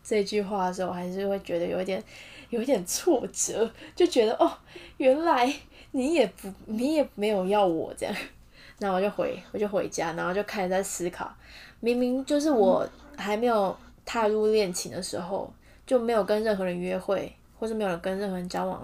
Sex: female